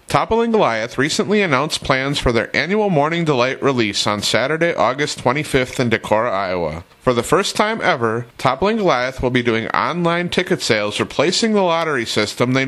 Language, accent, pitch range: English, American, 115-180 Hz